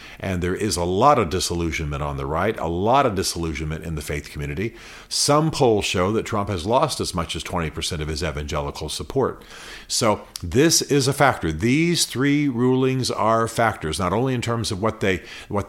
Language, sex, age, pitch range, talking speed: English, male, 50-69, 85-115 Hz, 195 wpm